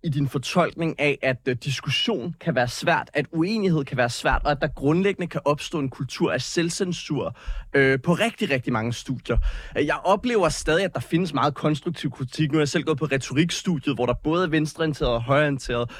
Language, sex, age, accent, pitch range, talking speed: Danish, male, 30-49, native, 130-160 Hz, 205 wpm